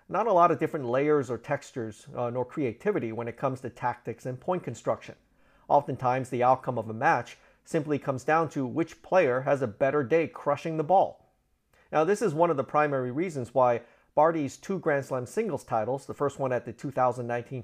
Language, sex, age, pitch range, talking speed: English, male, 40-59, 125-155 Hz, 200 wpm